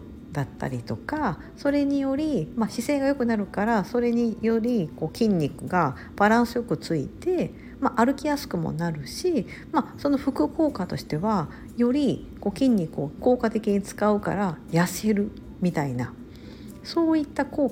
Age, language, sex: 50-69, Japanese, female